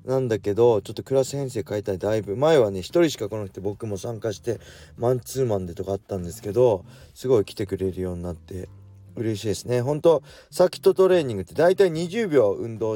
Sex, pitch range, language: male, 95-125 Hz, Japanese